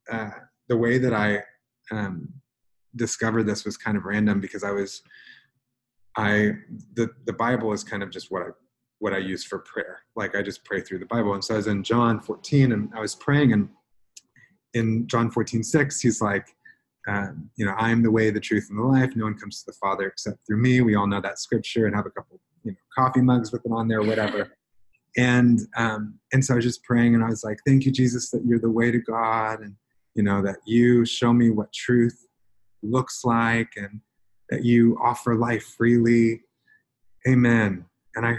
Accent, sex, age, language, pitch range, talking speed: American, male, 30-49, English, 105-125 Hz, 210 wpm